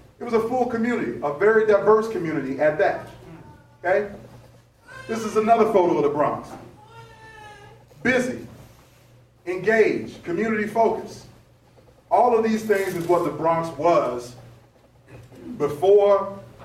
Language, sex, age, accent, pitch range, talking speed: English, male, 30-49, American, 140-200 Hz, 120 wpm